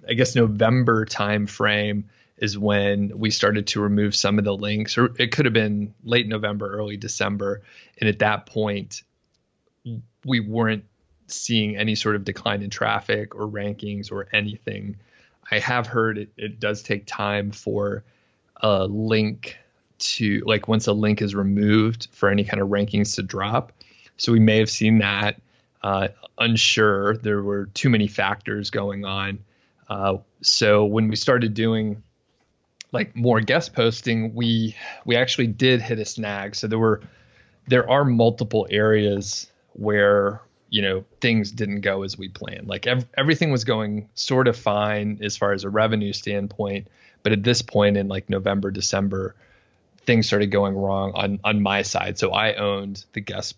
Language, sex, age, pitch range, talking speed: English, male, 30-49, 100-110 Hz, 165 wpm